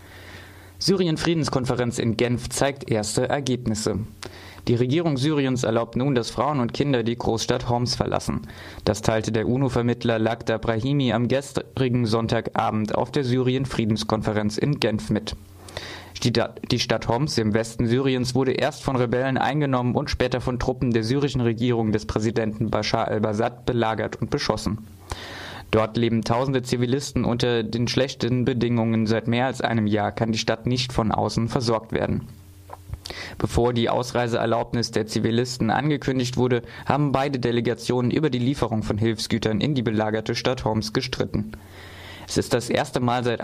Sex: male